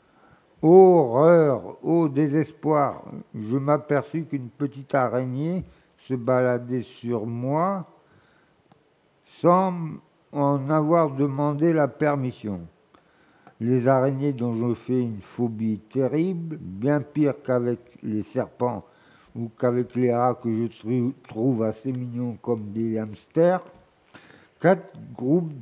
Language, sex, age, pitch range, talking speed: French, male, 60-79, 115-145 Hz, 110 wpm